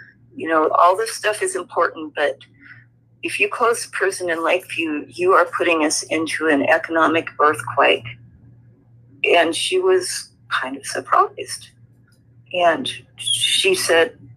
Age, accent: 50-69, American